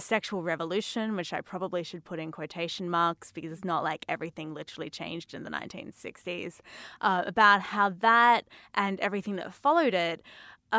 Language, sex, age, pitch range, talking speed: English, female, 10-29, 170-220 Hz, 165 wpm